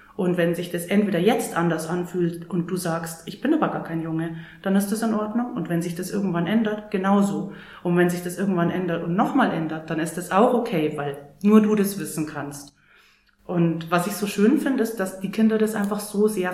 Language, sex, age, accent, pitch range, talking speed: German, female, 30-49, German, 170-210 Hz, 230 wpm